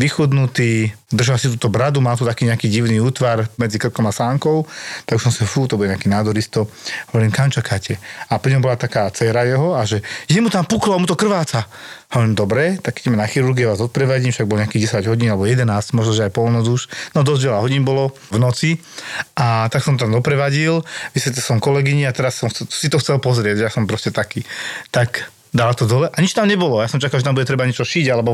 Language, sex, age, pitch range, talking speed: Slovak, male, 40-59, 115-145 Hz, 225 wpm